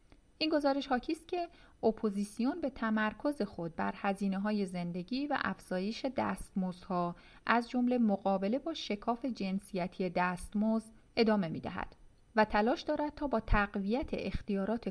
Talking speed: 130 wpm